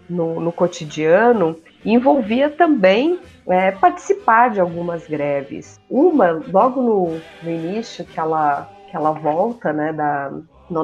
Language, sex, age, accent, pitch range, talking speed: Portuguese, female, 30-49, Brazilian, 160-190 Hz, 110 wpm